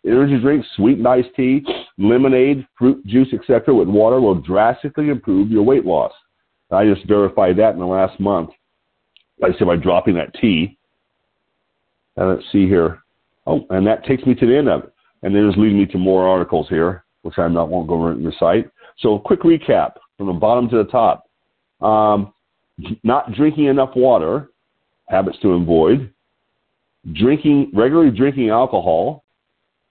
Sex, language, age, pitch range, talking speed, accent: male, English, 50-69, 95-130 Hz, 170 wpm, American